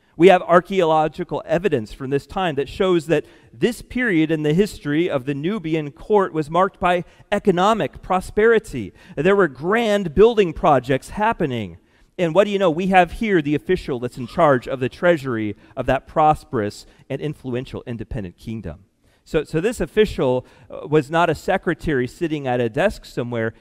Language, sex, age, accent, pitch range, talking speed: English, male, 40-59, American, 130-185 Hz, 170 wpm